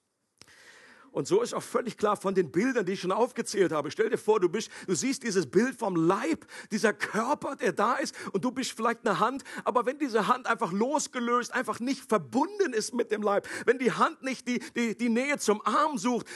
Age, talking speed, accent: 40-59, 220 wpm, German